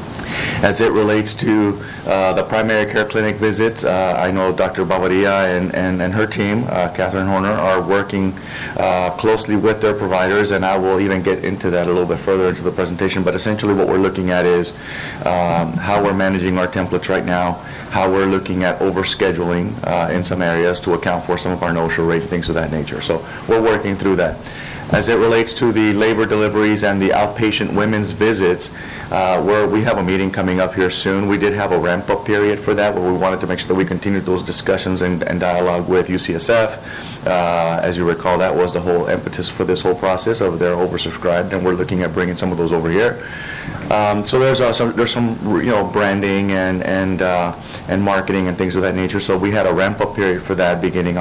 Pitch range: 90-105 Hz